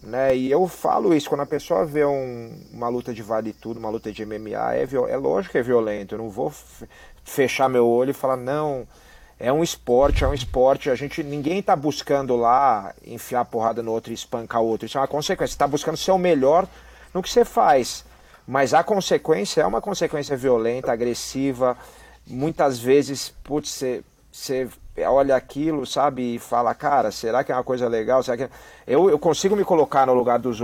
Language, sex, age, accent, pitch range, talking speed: Portuguese, male, 40-59, Brazilian, 125-150 Hz, 205 wpm